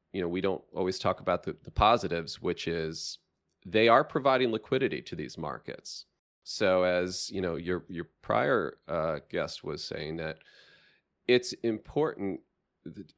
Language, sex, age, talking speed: English, male, 40-59, 155 wpm